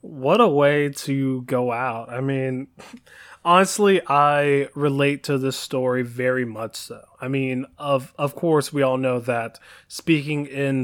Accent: American